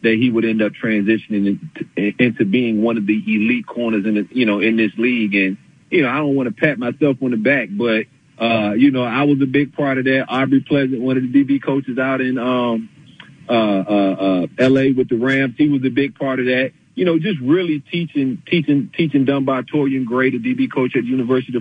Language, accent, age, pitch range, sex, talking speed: English, American, 40-59, 110-135 Hz, male, 230 wpm